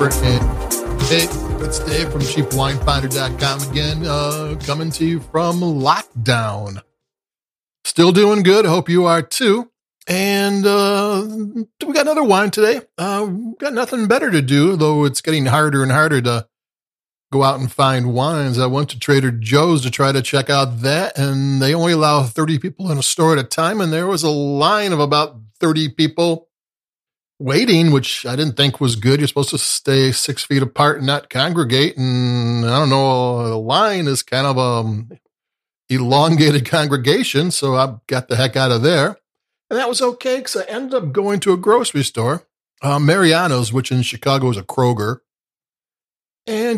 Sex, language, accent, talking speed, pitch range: male, English, American, 175 wpm, 135-170 Hz